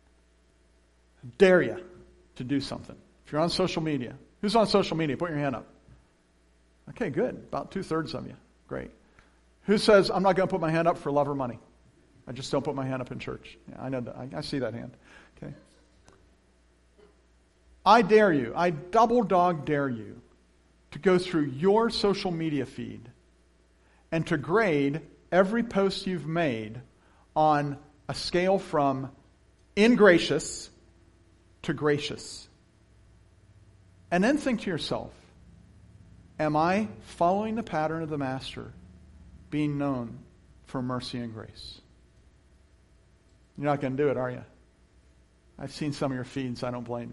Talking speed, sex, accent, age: 155 wpm, male, American, 50-69